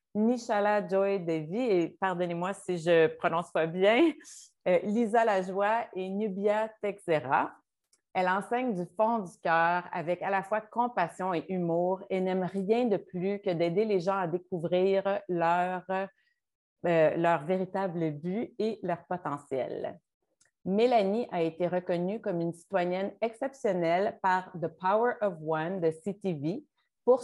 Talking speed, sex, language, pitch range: 145 wpm, female, French, 175-215 Hz